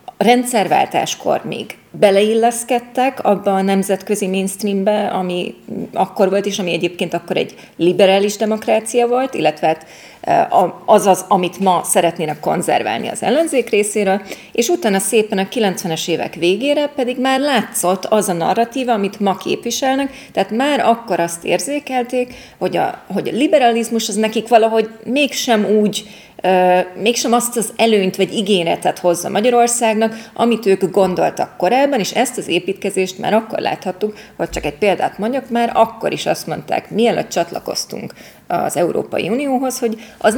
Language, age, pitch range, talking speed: Hungarian, 30-49, 185-235 Hz, 140 wpm